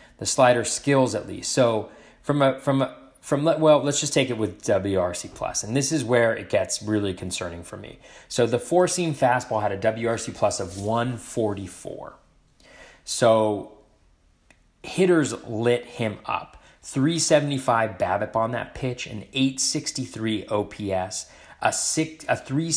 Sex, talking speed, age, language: male, 170 wpm, 30-49, English